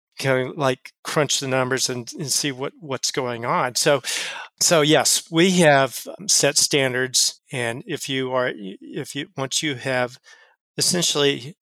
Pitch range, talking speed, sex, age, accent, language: 130-150 Hz, 150 wpm, male, 40-59, American, English